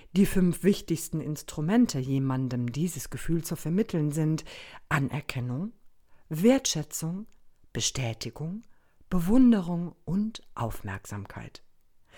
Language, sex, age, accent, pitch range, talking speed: German, female, 50-69, German, 125-195 Hz, 80 wpm